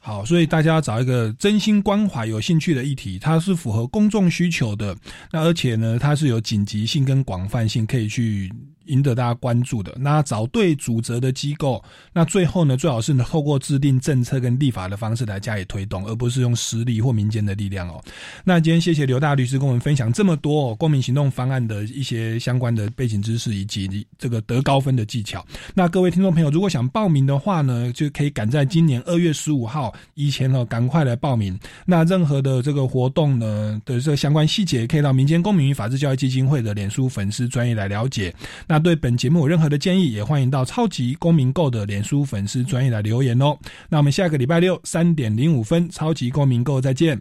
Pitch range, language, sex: 115-155 Hz, Chinese, male